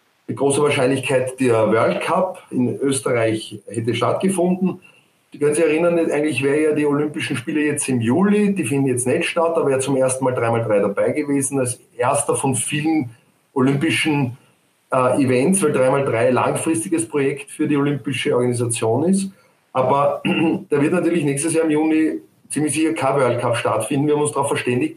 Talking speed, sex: 170 wpm, male